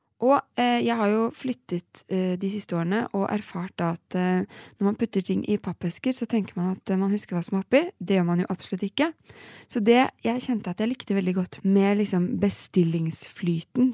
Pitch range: 185-245 Hz